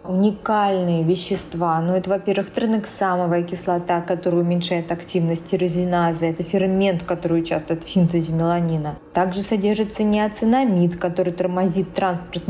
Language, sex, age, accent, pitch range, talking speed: Russian, female, 20-39, native, 175-205 Hz, 115 wpm